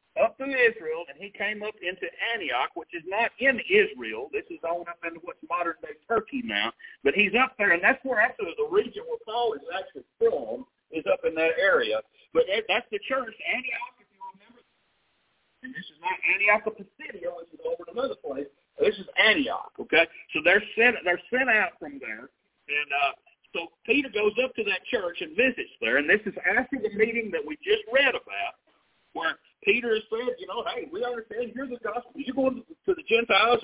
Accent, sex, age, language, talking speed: American, male, 50-69, English, 205 wpm